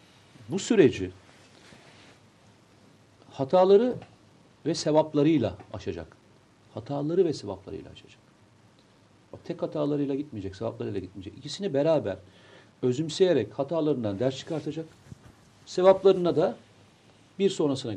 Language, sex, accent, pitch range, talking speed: Turkish, male, native, 105-145 Hz, 85 wpm